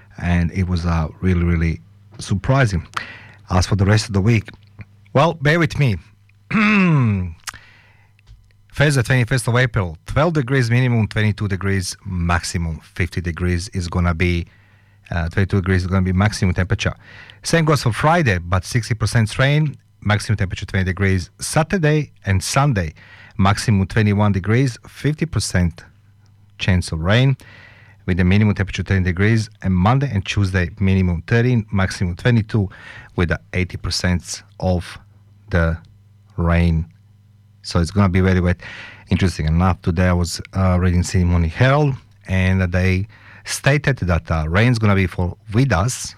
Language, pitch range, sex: English, 90-110 Hz, male